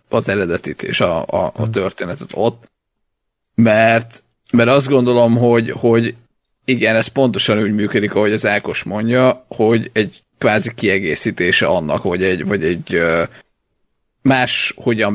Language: Hungarian